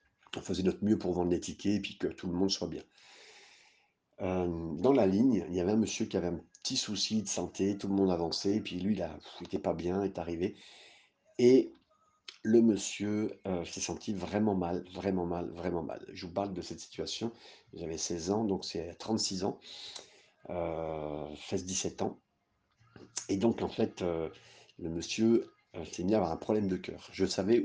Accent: French